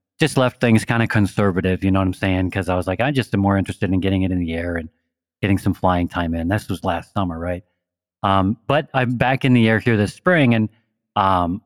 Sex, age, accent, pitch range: male, 40-59, American, 95-120 Hz